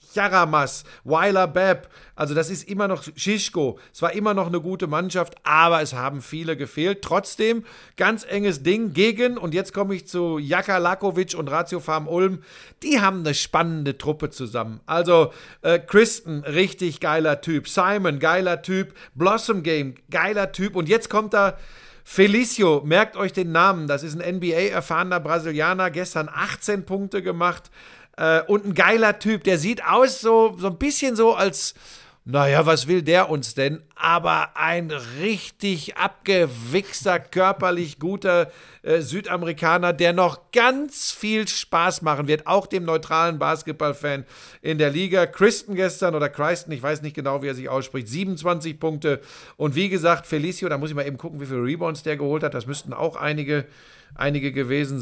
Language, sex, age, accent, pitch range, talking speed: German, male, 50-69, German, 150-195 Hz, 165 wpm